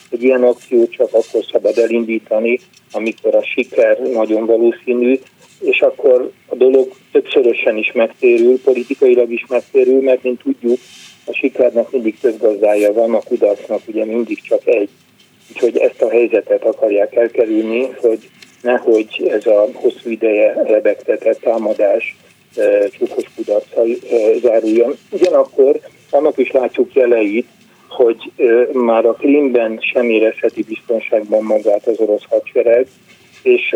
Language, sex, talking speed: Hungarian, male, 130 wpm